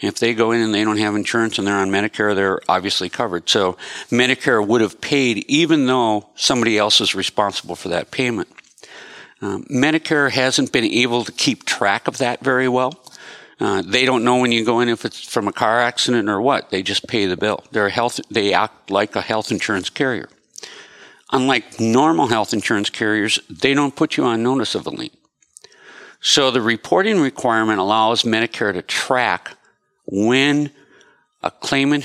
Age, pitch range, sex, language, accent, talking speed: 50-69, 105-130 Hz, male, English, American, 180 wpm